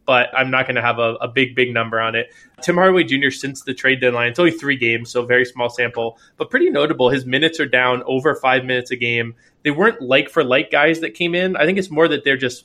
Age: 20-39